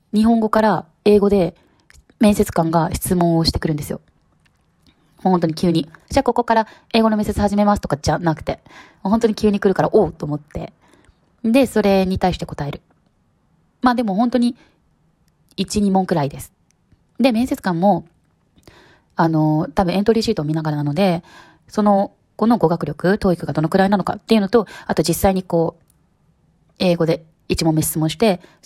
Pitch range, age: 160-215 Hz, 20-39